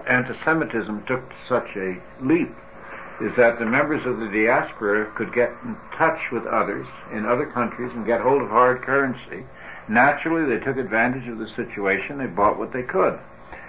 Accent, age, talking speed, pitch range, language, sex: American, 60-79, 170 wpm, 110-140 Hz, English, male